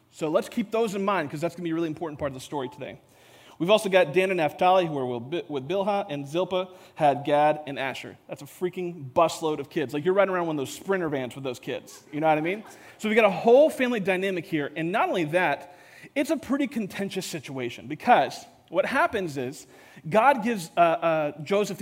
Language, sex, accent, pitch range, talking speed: English, male, American, 150-200 Hz, 230 wpm